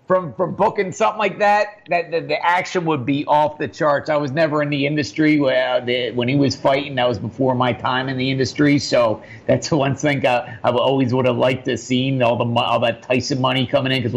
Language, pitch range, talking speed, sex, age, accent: English, 125-150 Hz, 245 wpm, male, 50-69, American